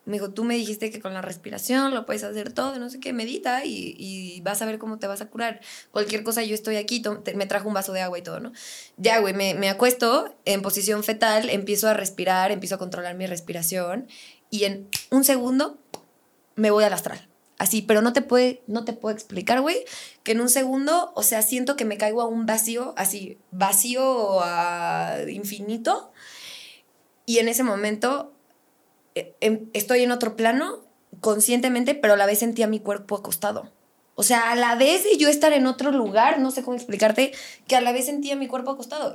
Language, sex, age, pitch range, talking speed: Spanish, female, 20-39, 205-250 Hz, 205 wpm